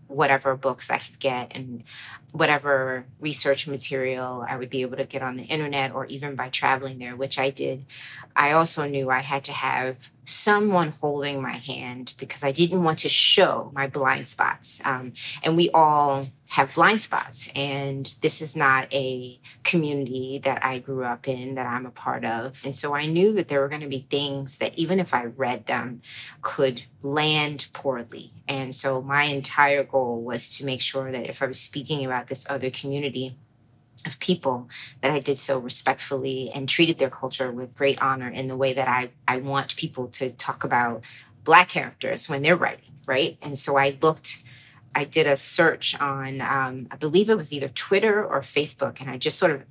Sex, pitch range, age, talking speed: female, 130-145 Hz, 30-49, 195 wpm